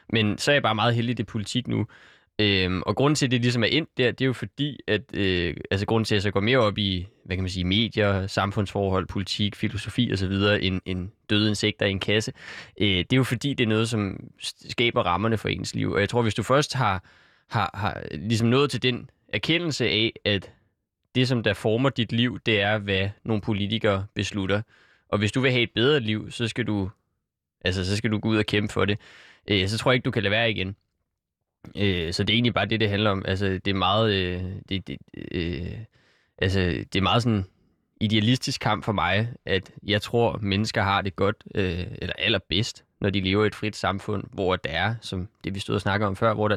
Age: 20-39